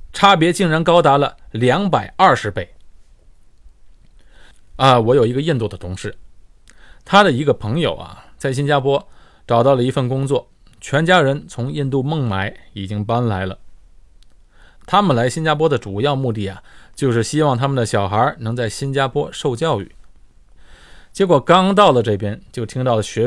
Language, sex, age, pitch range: Chinese, male, 20-39, 100-140 Hz